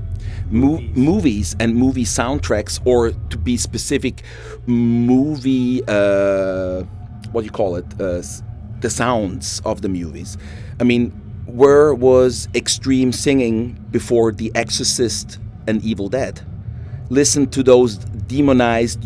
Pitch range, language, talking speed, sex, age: 100-120 Hz, English, 115 wpm, male, 40-59